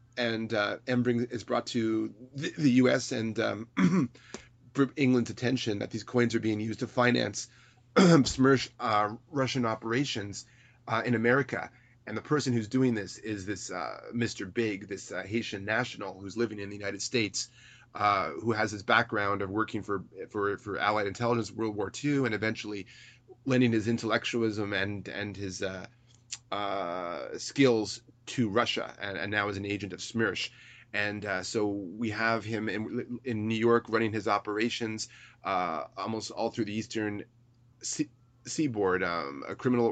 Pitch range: 105-120 Hz